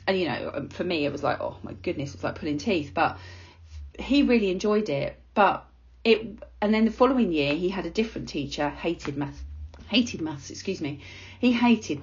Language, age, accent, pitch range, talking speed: English, 40-59, British, 160-220 Hz, 200 wpm